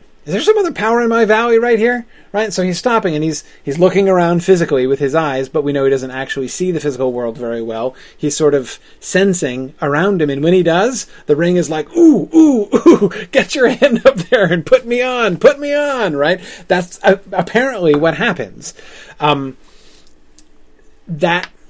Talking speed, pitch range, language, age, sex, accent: 195 wpm, 135-195 Hz, English, 30-49, male, American